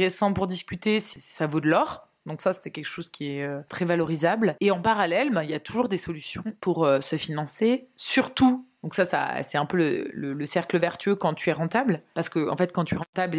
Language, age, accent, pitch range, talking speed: French, 20-39, French, 155-190 Hz, 230 wpm